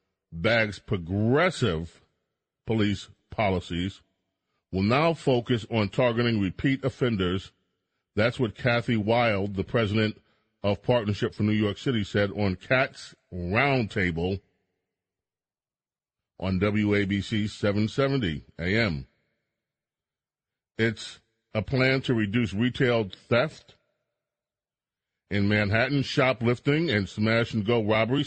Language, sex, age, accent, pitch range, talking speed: English, male, 40-59, American, 100-120 Hz, 100 wpm